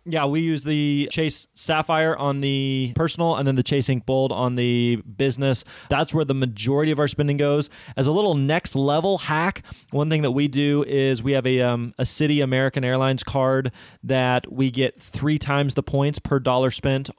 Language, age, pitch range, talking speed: English, 20-39, 120-140 Hz, 200 wpm